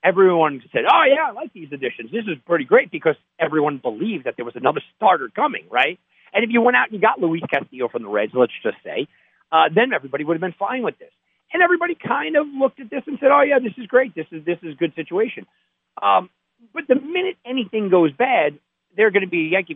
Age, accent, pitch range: 50-69, American, 160-235 Hz